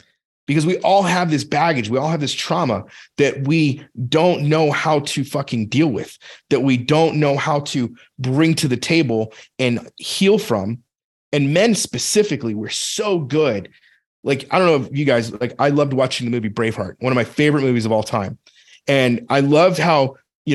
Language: English